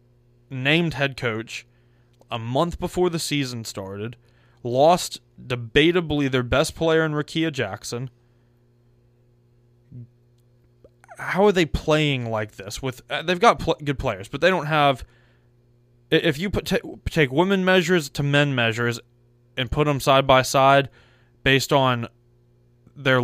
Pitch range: 120-140 Hz